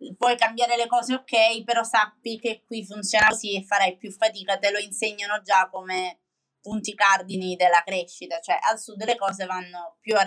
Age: 20-39